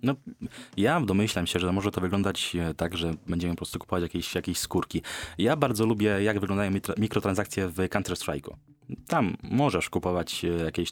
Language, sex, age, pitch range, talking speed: Polish, male, 20-39, 90-110 Hz, 165 wpm